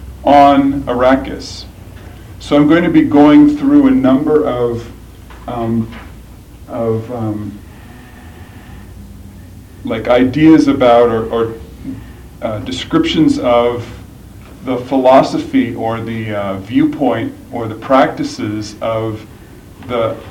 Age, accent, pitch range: 40-59, American, 100-150 Hz